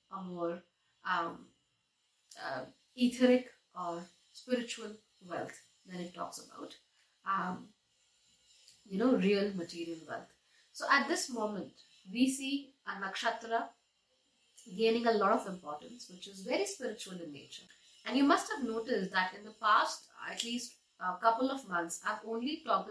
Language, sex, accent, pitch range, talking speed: English, female, Indian, 185-245 Hz, 145 wpm